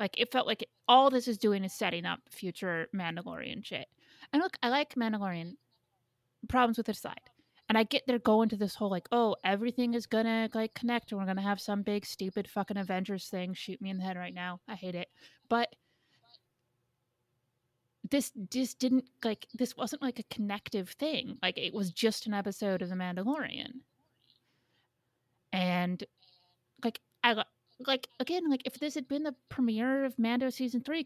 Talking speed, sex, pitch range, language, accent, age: 185 wpm, female, 180-235 Hz, English, American, 30-49